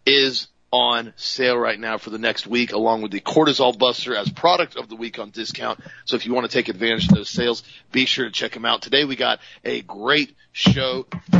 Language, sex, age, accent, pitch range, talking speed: English, male, 40-59, American, 110-135 Hz, 230 wpm